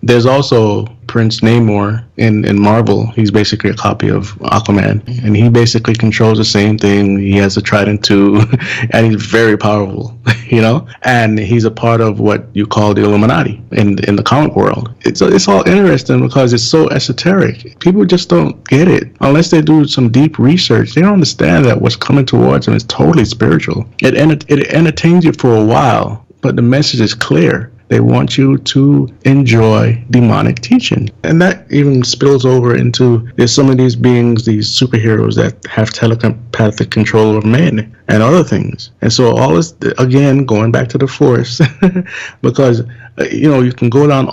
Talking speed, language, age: 185 wpm, English, 30-49